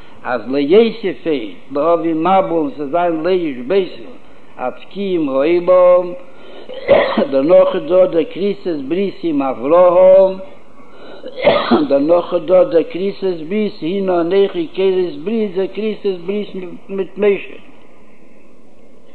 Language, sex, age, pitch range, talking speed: Hebrew, male, 60-79, 175-215 Hz, 90 wpm